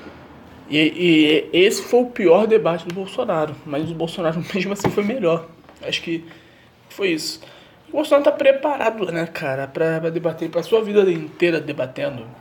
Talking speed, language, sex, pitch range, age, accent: 170 wpm, Portuguese, male, 150-230 Hz, 20-39, Brazilian